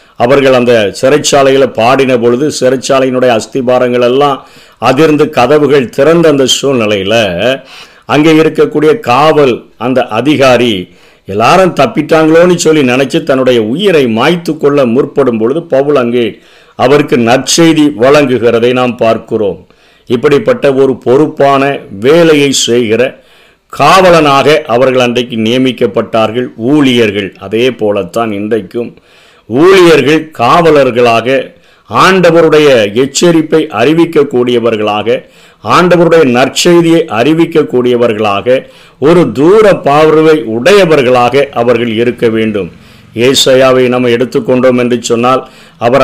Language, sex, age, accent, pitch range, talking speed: Tamil, male, 50-69, native, 120-150 Hz, 85 wpm